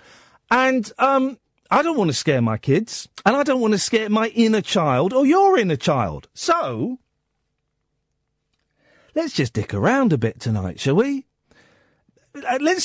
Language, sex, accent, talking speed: English, male, British, 155 wpm